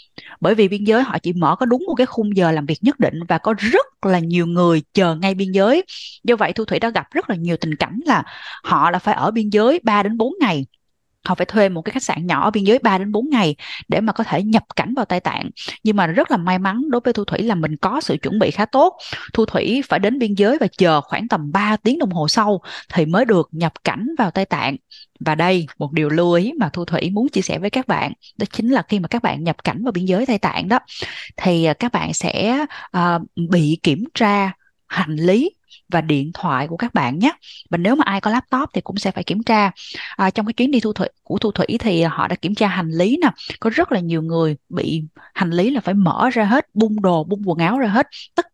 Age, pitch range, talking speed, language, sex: 20-39, 175-235 Hz, 260 wpm, Vietnamese, female